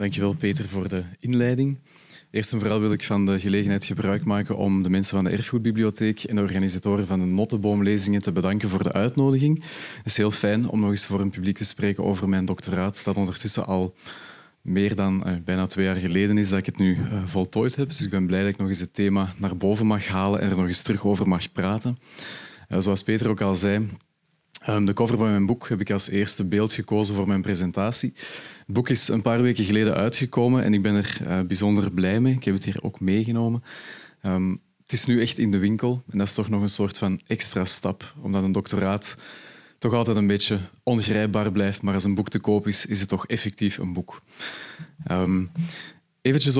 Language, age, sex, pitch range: Dutch, 30-49, male, 100-115 Hz